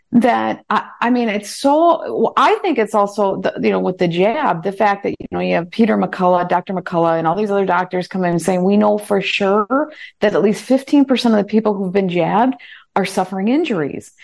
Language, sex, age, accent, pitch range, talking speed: English, female, 40-59, American, 185-255 Hz, 230 wpm